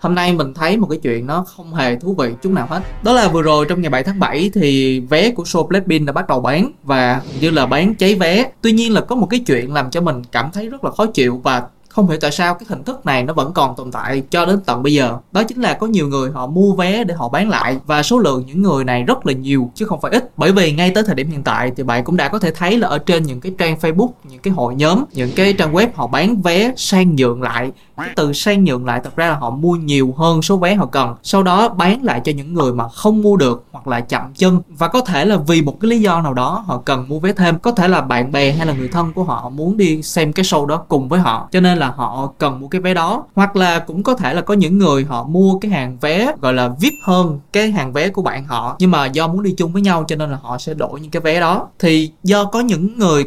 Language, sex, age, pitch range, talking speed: Vietnamese, male, 20-39, 140-195 Hz, 290 wpm